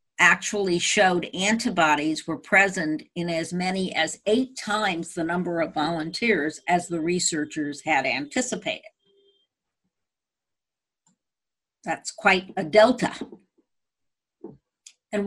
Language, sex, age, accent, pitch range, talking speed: English, female, 50-69, American, 170-215 Hz, 100 wpm